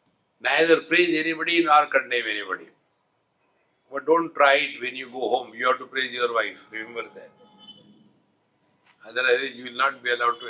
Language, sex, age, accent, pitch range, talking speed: English, male, 60-79, Indian, 120-150 Hz, 165 wpm